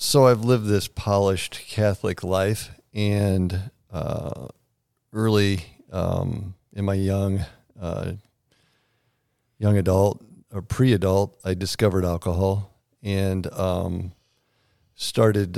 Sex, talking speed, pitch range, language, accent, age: male, 90 wpm, 90-110 Hz, English, American, 50-69